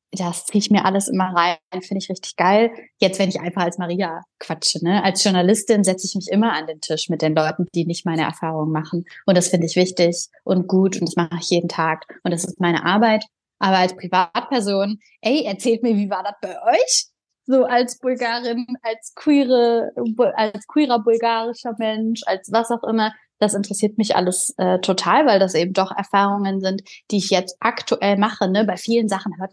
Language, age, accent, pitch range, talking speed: German, 20-39, German, 180-215 Hz, 205 wpm